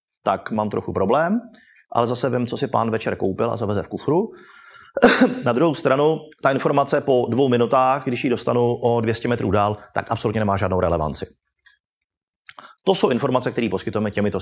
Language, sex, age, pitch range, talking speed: Czech, male, 30-49, 105-140 Hz, 175 wpm